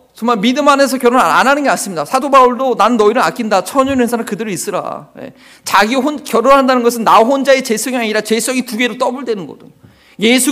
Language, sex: Korean, male